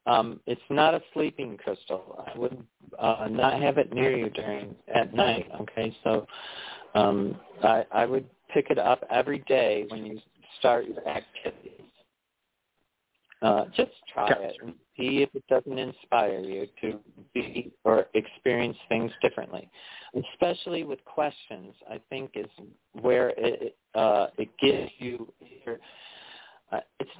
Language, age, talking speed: English, 40-59, 145 wpm